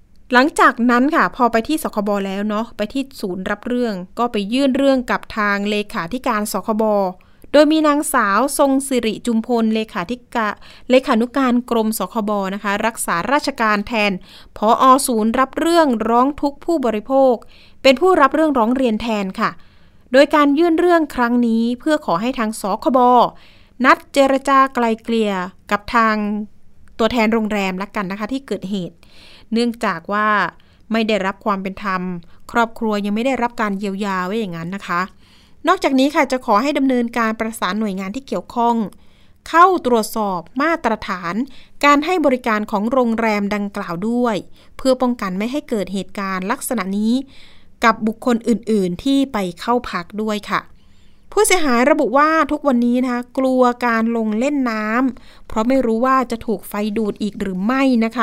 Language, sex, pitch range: Thai, female, 210-260 Hz